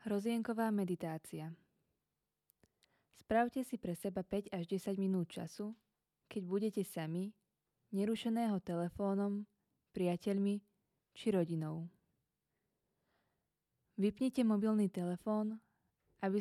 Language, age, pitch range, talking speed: Czech, 20-39, 180-210 Hz, 85 wpm